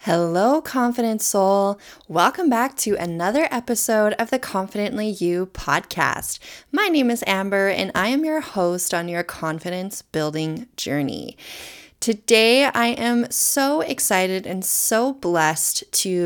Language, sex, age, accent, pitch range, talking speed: English, female, 20-39, American, 165-220 Hz, 135 wpm